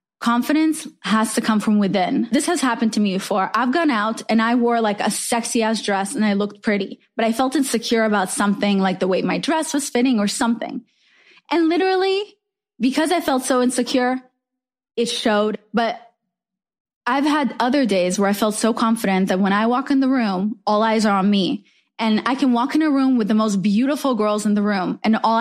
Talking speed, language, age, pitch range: 215 wpm, English, 20-39, 205-255 Hz